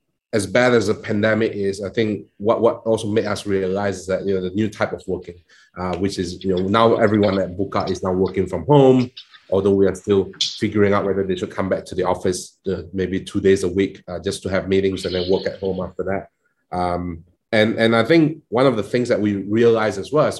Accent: Malaysian